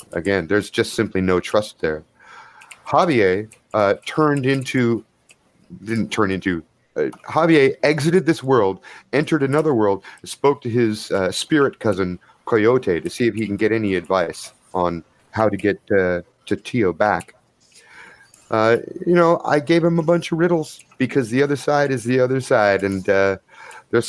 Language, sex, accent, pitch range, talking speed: English, male, American, 95-125 Hz, 165 wpm